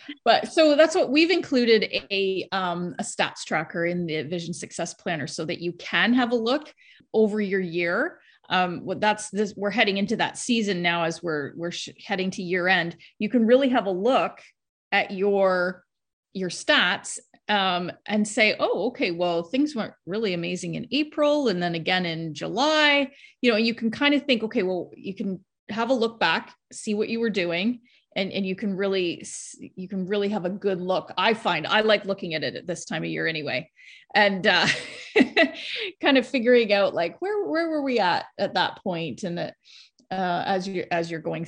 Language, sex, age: English, female, 30-49